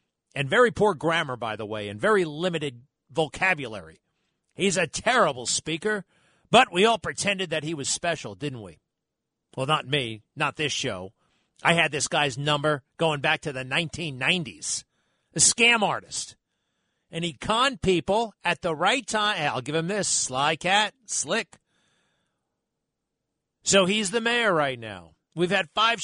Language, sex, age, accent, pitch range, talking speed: English, male, 40-59, American, 150-205 Hz, 155 wpm